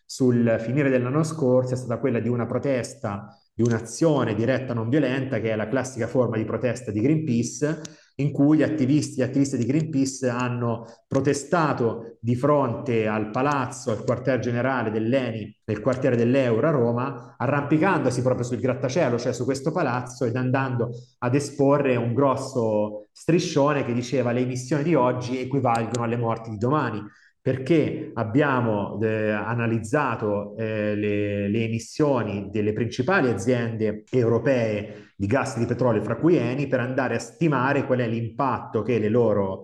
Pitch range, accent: 115-140 Hz, native